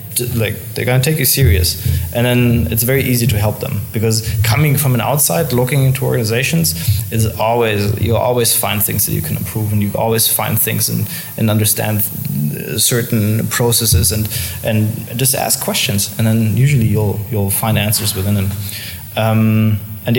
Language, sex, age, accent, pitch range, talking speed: English, male, 20-39, German, 110-120 Hz, 170 wpm